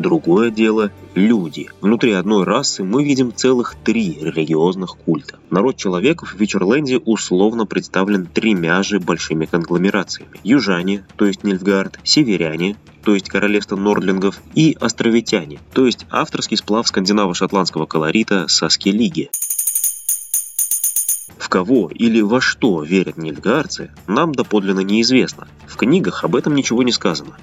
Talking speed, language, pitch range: 125 wpm, Russian, 90-115 Hz